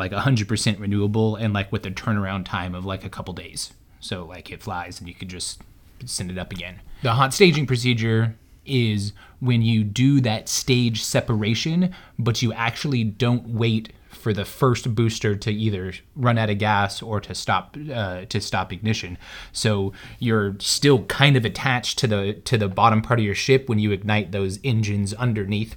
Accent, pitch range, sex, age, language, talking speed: American, 100-120 Hz, male, 30-49, English, 190 wpm